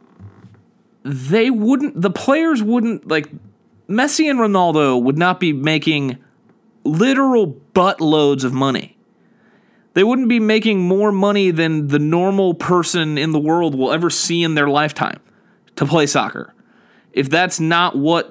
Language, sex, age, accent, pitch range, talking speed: English, male, 30-49, American, 140-210 Hz, 145 wpm